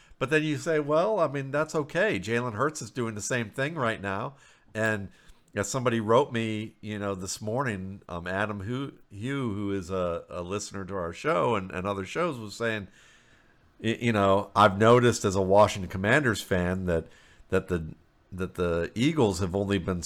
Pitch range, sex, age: 95-115 Hz, male, 50-69